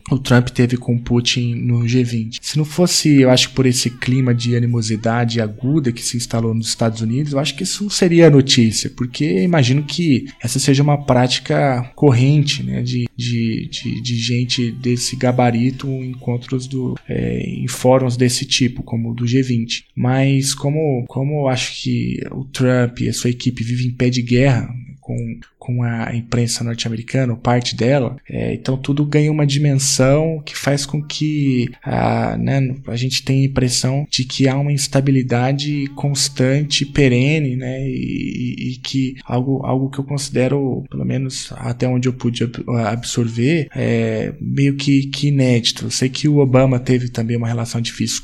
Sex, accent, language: male, Brazilian, Portuguese